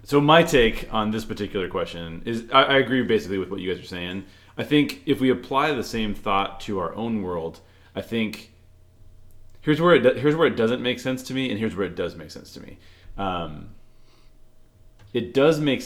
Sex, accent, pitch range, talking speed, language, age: male, American, 90-115 Hz, 215 wpm, English, 30-49